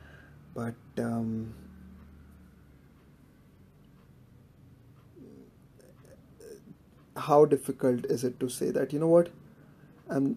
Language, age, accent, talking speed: Hindi, 30-49, native, 75 wpm